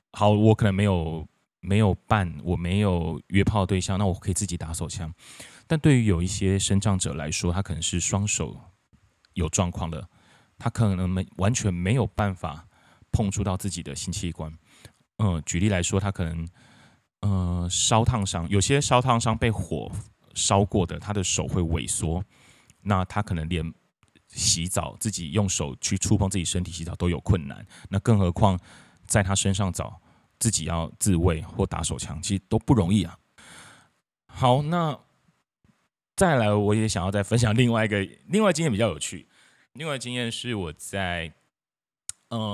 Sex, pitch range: male, 90-110 Hz